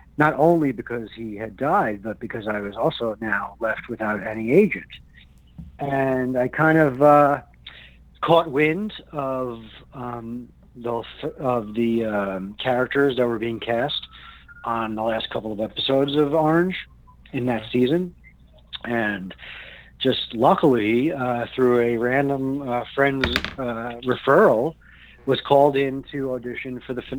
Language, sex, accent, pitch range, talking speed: English, male, American, 110-140 Hz, 135 wpm